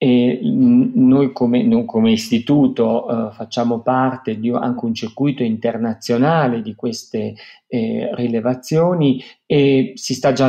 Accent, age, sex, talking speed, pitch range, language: native, 40-59, male, 125 wpm, 125-145 Hz, Italian